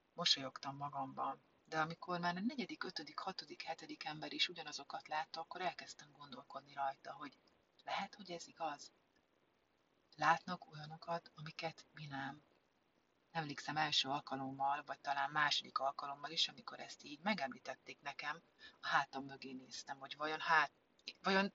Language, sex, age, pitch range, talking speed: Hungarian, female, 30-49, 140-175 Hz, 135 wpm